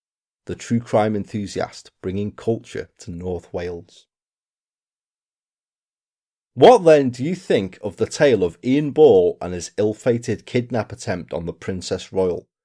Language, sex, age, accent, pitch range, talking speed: English, male, 30-49, British, 105-150 Hz, 140 wpm